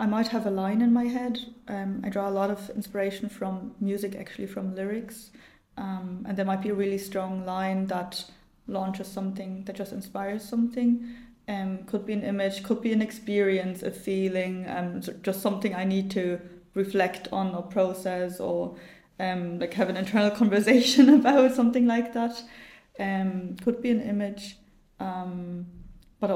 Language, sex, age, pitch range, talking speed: English, female, 20-39, 190-220 Hz, 170 wpm